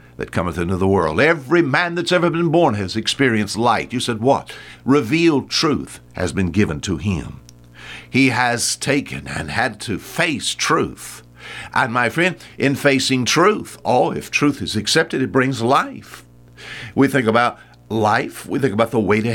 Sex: male